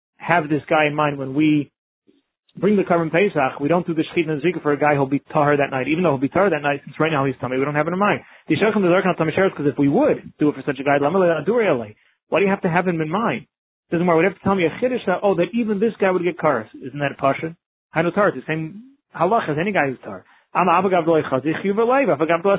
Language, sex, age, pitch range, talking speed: English, male, 30-49, 145-180 Hz, 260 wpm